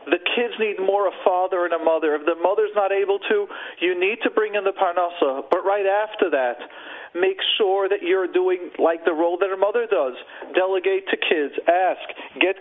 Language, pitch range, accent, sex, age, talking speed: English, 175-240 Hz, American, male, 40-59, 205 wpm